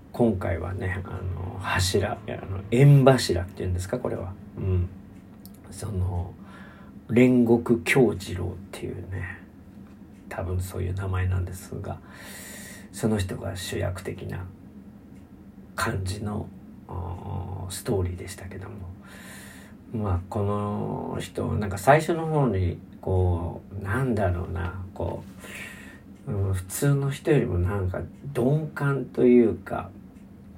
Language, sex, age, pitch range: Japanese, male, 40-59, 90-105 Hz